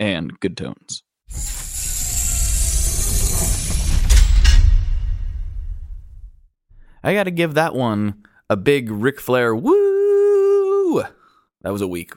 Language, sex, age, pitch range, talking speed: English, male, 20-39, 95-150 Hz, 85 wpm